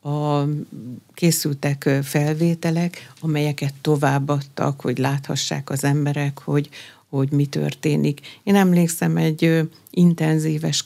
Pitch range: 145-165 Hz